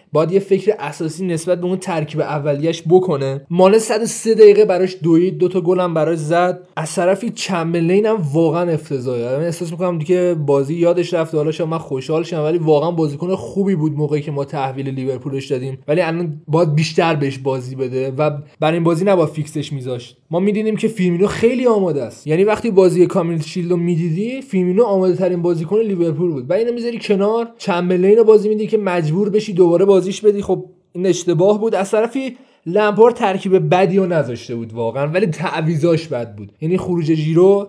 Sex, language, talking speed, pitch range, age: male, Persian, 185 wpm, 160-195 Hz, 20-39